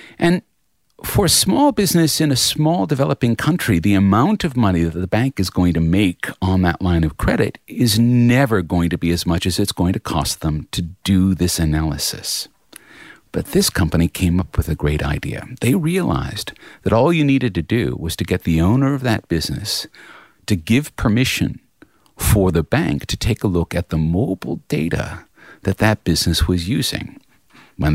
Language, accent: English, American